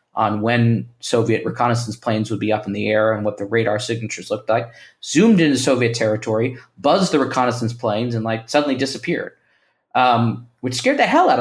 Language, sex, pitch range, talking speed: English, male, 110-135 Hz, 190 wpm